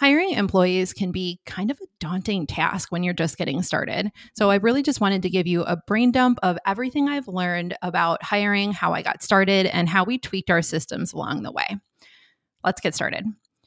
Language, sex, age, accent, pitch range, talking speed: English, female, 20-39, American, 175-230 Hz, 205 wpm